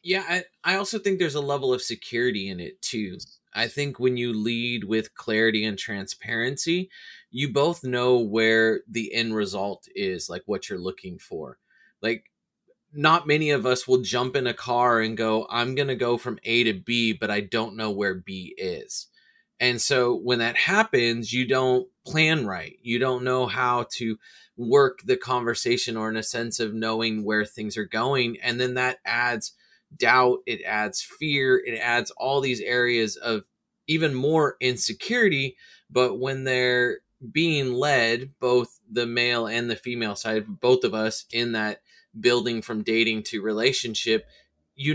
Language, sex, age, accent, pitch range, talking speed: English, male, 30-49, American, 115-140 Hz, 170 wpm